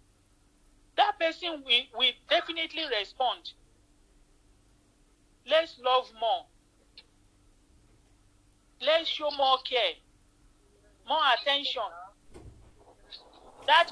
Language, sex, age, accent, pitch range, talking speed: English, male, 50-69, Nigerian, 230-300 Hz, 70 wpm